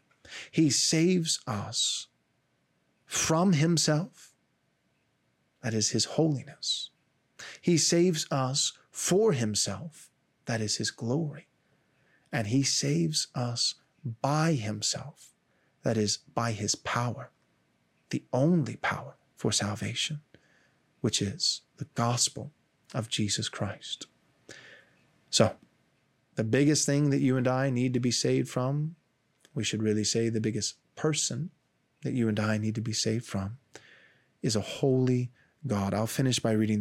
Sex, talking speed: male, 125 wpm